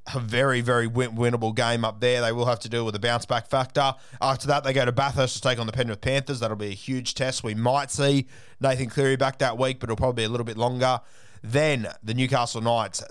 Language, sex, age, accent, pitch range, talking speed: English, male, 20-39, Australian, 110-135 Hz, 245 wpm